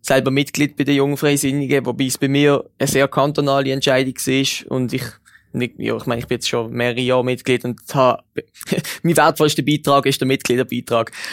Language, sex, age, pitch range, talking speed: German, male, 20-39, 130-150 Hz, 185 wpm